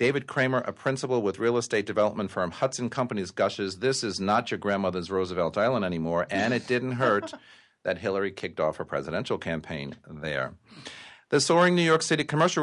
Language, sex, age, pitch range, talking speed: English, male, 40-59, 95-125 Hz, 180 wpm